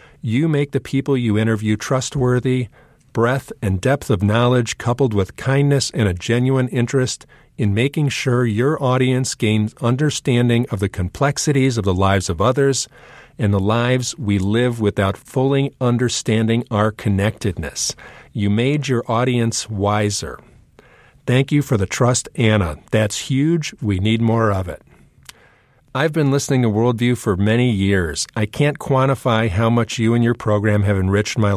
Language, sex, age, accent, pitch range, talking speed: English, male, 50-69, American, 105-130 Hz, 155 wpm